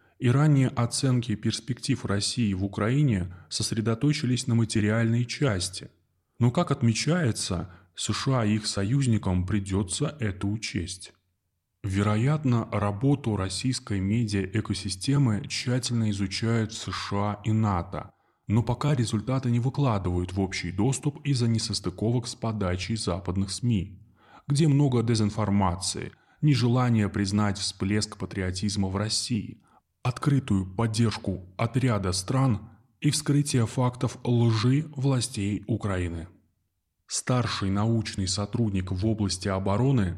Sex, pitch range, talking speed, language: male, 100-120 Hz, 105 wpm, Russian